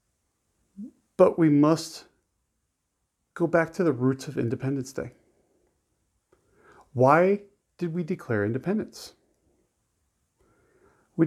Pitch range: 120-155 Hz